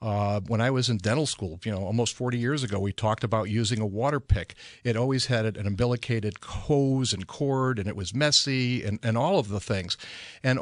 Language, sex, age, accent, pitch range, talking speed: English, male, 50-69, American, 110-140 Hz, 220 wpm